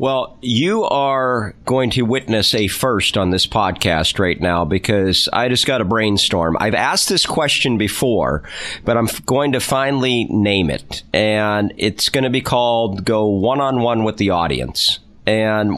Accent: American